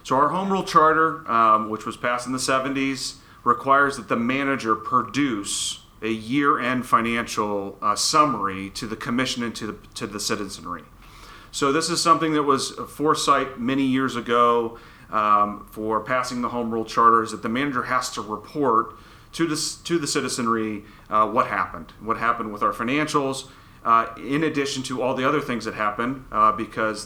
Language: English